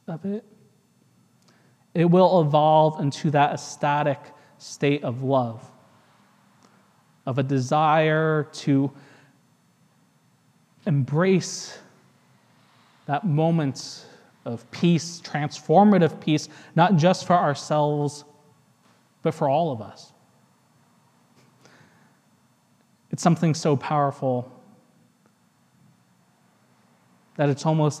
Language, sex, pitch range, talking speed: English, male, 140-165 Hz, 80 wpm